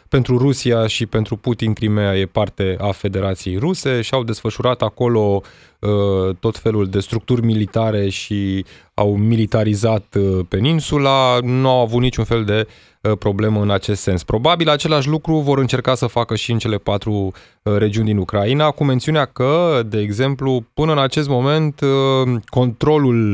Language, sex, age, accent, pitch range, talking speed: Romanian, male, 20-39, native, 105-125 Hz, 150 wpm